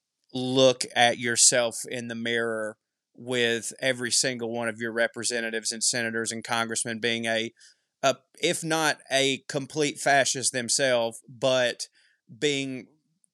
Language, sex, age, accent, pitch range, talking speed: English, male, 20-39, American, 120-150 Hz, 125 wpm